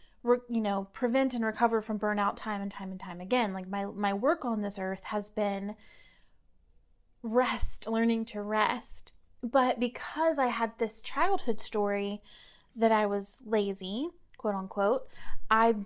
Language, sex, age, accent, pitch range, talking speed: English, female, 30-49, American, 205-240 Hz, 150 wpm